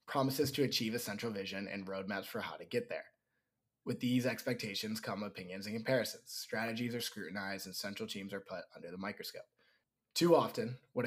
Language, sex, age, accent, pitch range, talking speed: English, male, 20-39, American, 100-130 Hz, 185 wpm